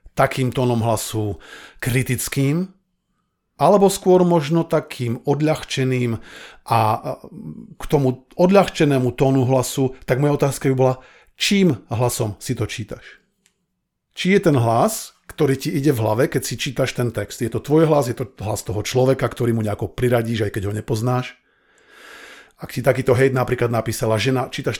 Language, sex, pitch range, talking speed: Slovak, male, 115-155 Hz, 155 wpm